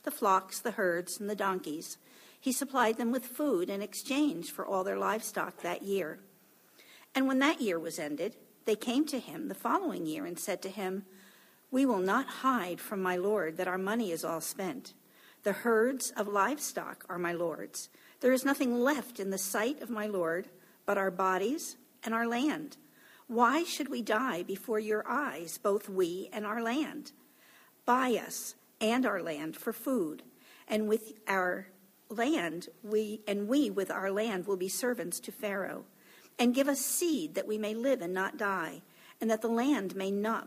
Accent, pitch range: American, 190-255 Hz